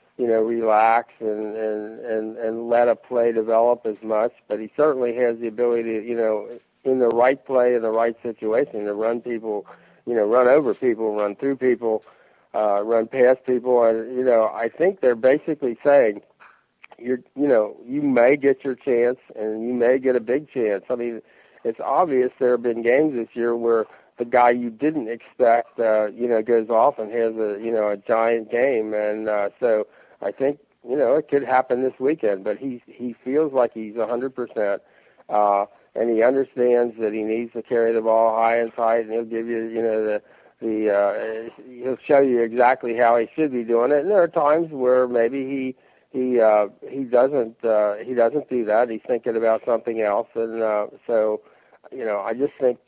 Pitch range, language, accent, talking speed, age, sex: 110-125 Hz, English, American, 205 wpm, 50-69, male